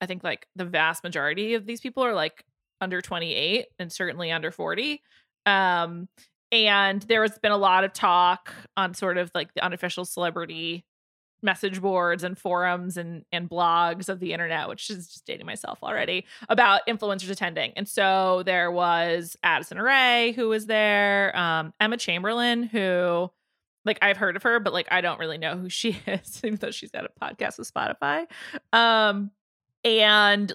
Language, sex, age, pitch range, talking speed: English, female, 20-39, 175-220 Hz, 175 wpm